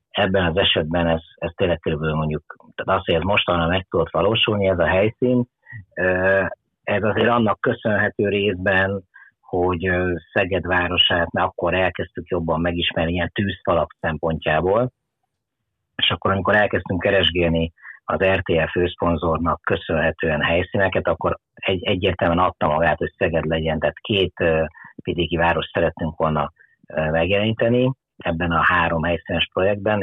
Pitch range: 80-95 Hz